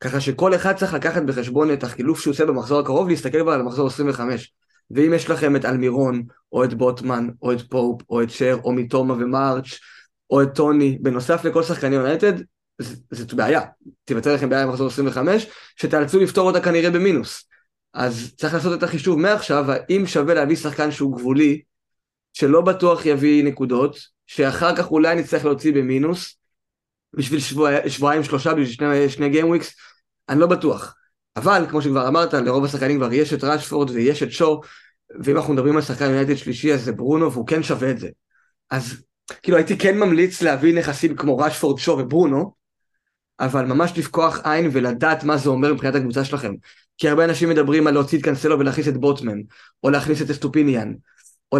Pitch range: 135-160 Hz